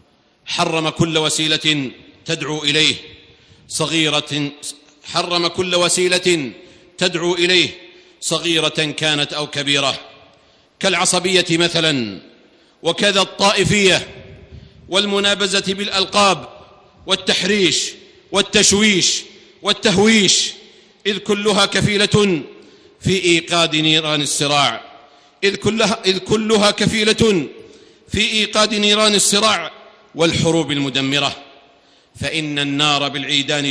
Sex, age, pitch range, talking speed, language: male, 50-69, 155-195 Hz, 80 wpm, Arabic